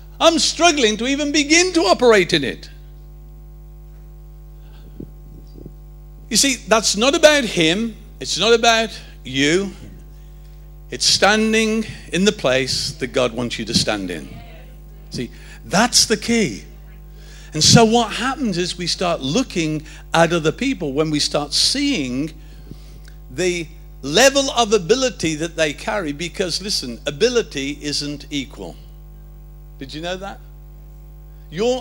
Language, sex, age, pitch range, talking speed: English, male, 50-69, 145-175 Hz, 125 wpm